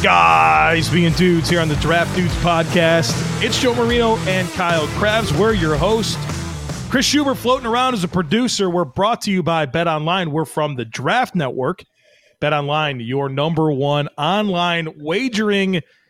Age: 30-49